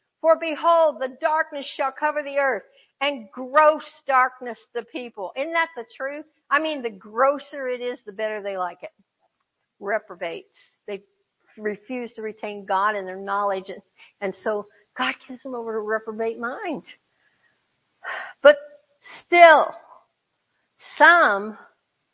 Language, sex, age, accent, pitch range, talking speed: English, female, 60-79, American, 215-305 Hz, 135 wpm